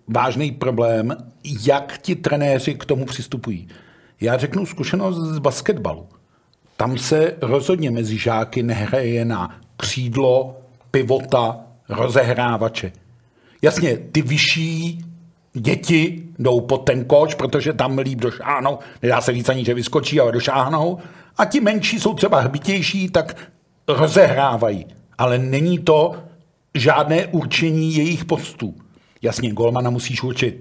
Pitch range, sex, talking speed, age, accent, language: 125-175 Hz, male, 120 wpm, 50-69, native, Czech